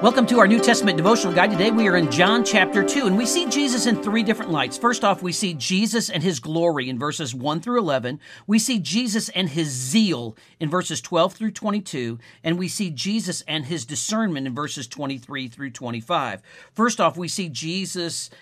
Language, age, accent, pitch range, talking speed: English, 50-69, American, 150-205 Hz, 205 wpm